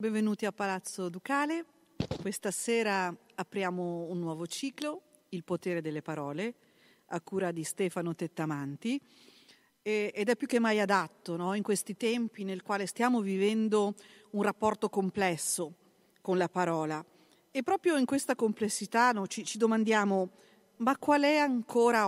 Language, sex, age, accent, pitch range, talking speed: Italian, female, 50-69, native, 185-235 Hz, 135 wpm